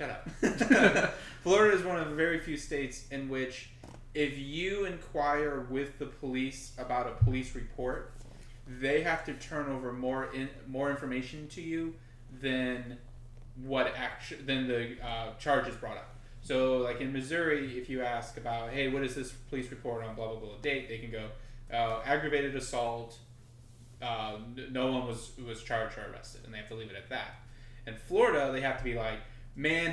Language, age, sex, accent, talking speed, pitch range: English, 20-39, male, American, 180 wpm, 115-135 Hz